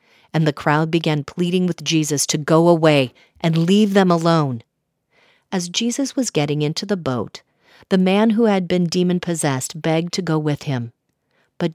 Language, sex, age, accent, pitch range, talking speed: English, female, 40-59, American, 145-190 Hz, 175 wpm